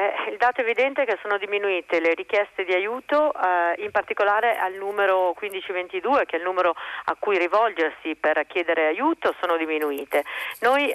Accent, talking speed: native, 165 wpm